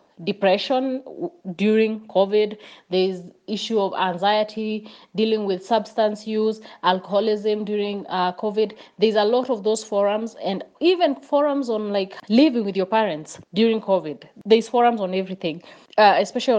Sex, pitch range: female, 190-235 Hz